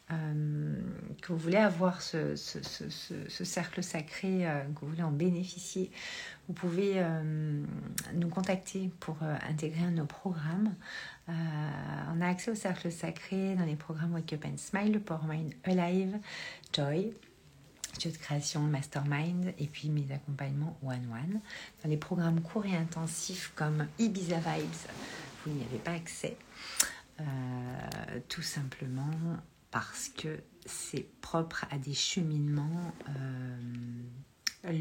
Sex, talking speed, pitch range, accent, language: female, 135 wpm, 145-180 Hz, French, French